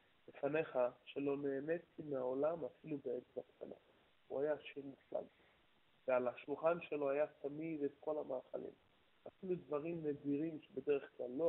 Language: Hebrew